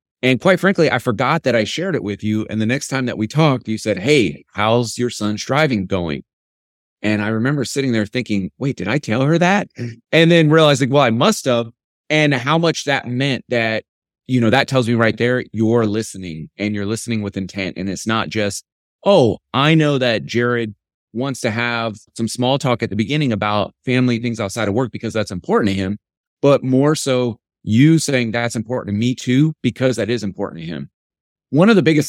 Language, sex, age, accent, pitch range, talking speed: English, male, 30-49, American, 110-130 Hz, 215 wpm